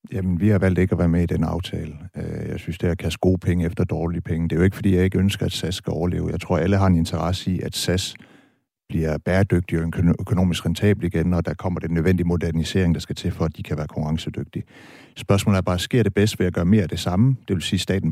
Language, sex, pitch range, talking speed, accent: Danish, male, 90-110 Hz, 275 wpm, native